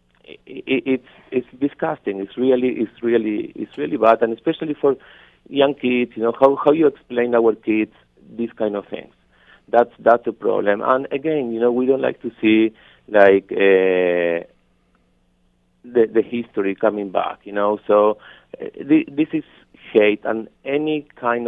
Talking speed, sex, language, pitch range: 160 wpm, male, English, 105-130 Hz